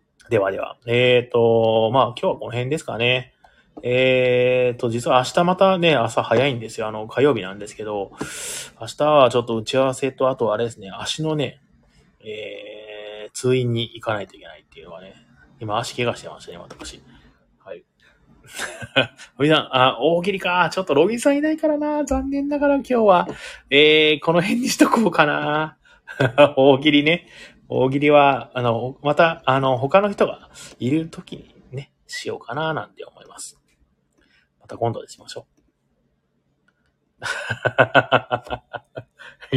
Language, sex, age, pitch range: Japanese, male, 20-39, 115-160 Hz